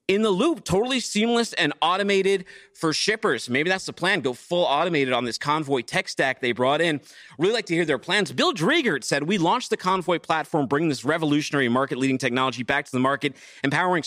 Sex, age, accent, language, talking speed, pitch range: male, 30-49, American, English, 205 wpm, 135-190 Hz